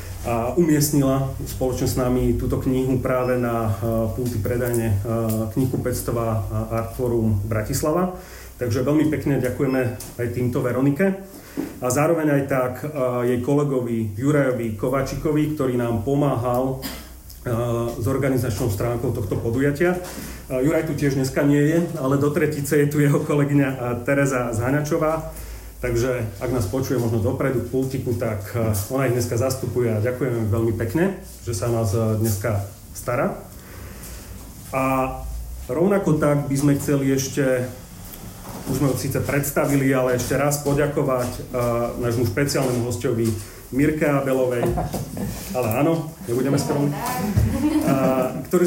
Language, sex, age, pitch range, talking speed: Slovak, male, 30-49, 120-145 Hz, 130 wpm